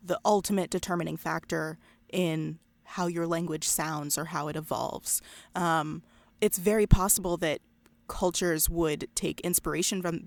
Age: 20-39